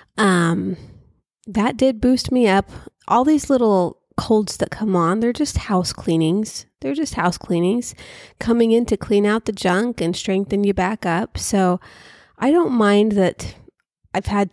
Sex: female